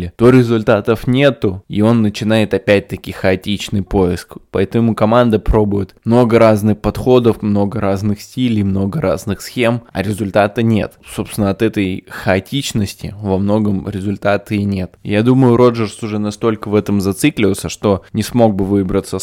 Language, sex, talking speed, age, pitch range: Russian, male, 145 wpm, 20-39, 95-110 Hz